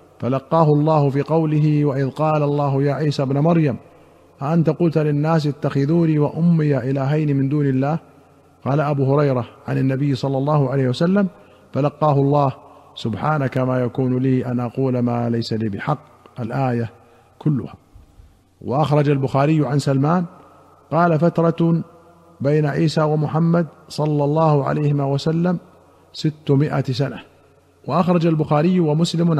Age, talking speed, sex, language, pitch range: 50-69, 125 wpm, male, Arabic, 135-160 Hz